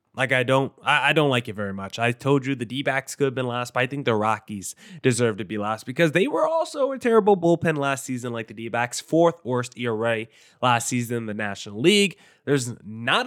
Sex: male